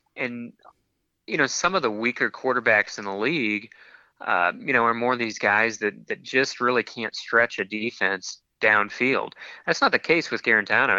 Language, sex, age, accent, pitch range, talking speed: English, male, 30-49, American, 110-130 Hz, 185 wpm